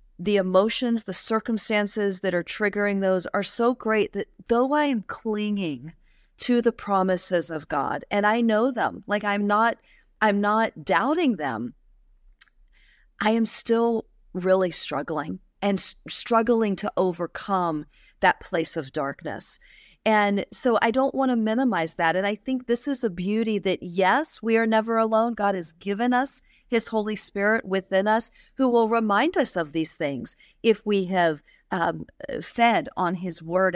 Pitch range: 180-230 Hz